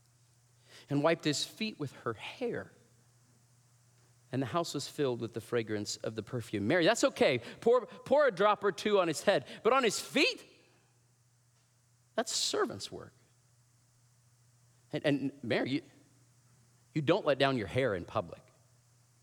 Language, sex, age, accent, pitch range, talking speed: English, male, 40-59, American, 115-135 Hz, 155 wpm